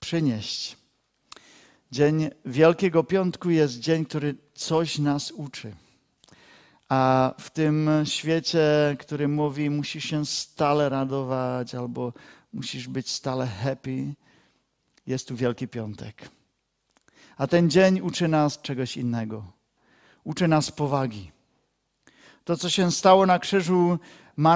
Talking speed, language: 110 wpm, Czech